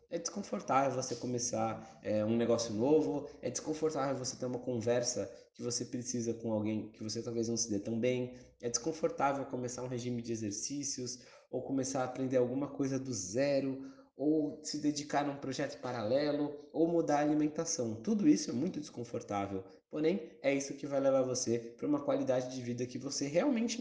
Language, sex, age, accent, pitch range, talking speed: Portuguese, male, 20-39, Brazilian, 115-150 Hz, 185 wpm